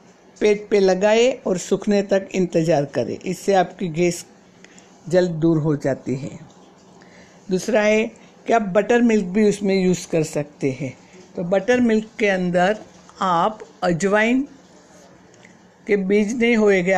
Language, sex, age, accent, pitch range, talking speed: Hindi, female, 60-79, native, 180-210 Hz, 140 wpm